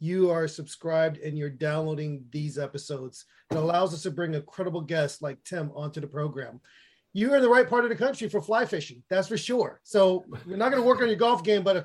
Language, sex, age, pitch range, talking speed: English, male, 30-49, 160-215 Hz, 235 wpm